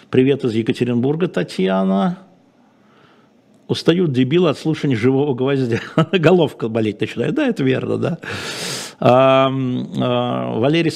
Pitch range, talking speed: 125-160 Hz, 110 wpm